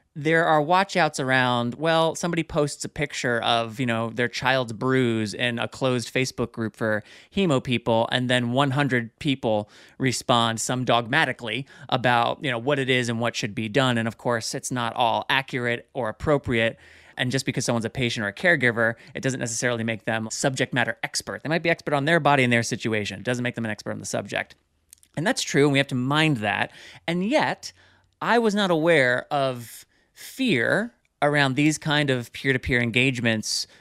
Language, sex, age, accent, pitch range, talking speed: English, male, 30-49, American, 120-145 Hz, 195 wpm